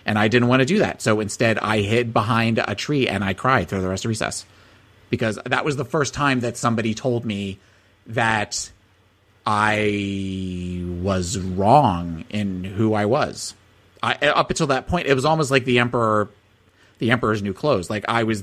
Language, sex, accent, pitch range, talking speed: English, male, American, 100-125 Hz, 190 wpm